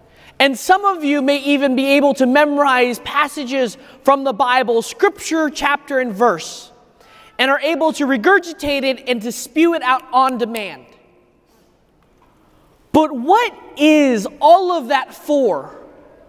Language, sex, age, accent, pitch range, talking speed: English, male, 30-49, American, 250-330 Hz, 140 wpm